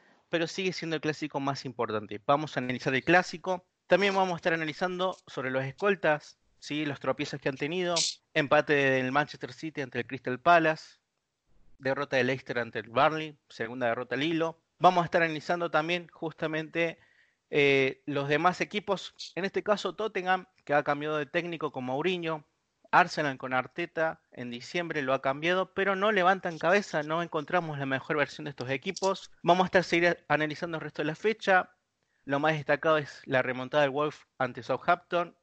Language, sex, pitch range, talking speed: Spanish, male, 135-175 Hz, 175 wpm